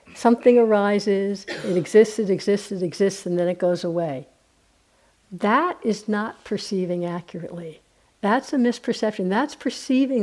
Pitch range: 185-235 Hz